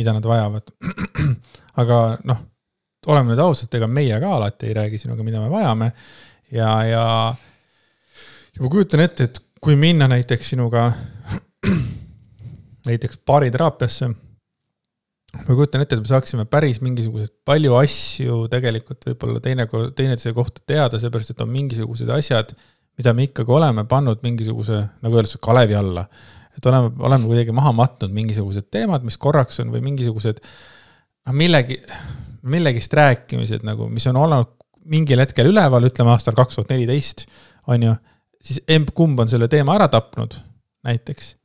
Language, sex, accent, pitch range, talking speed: English, male, Finnish, 115-135 Hz, 150 wpm